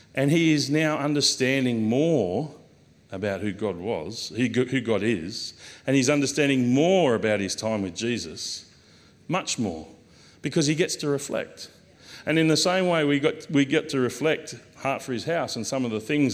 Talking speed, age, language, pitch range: 165 wpm, 40-59, English, 110-150 Hz